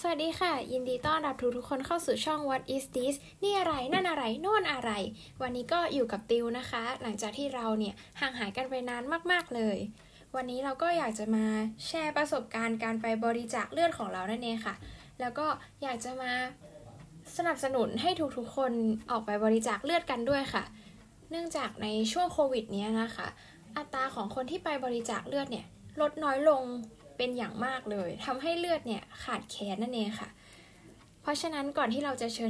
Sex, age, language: female, 10-29, Thai